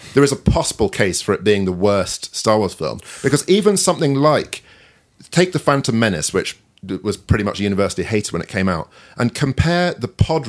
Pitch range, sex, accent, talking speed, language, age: 95-115 Hz, male, British, 205 wpm, English, 40-59